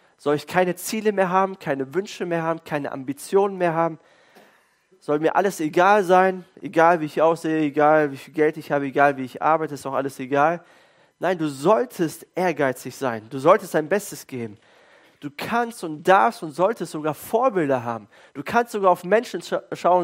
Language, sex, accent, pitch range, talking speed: German, male, German, 140-190 Hz, 185 wpm